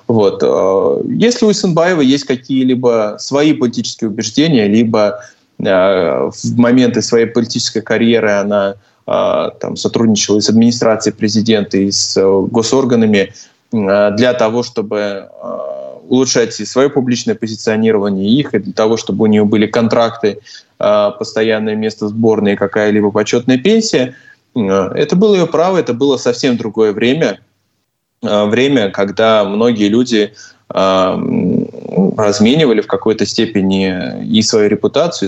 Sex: male